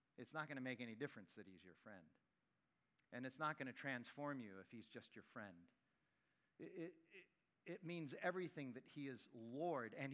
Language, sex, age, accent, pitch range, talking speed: English, male, 50-69, American, 115-145 Hz, 195 wpm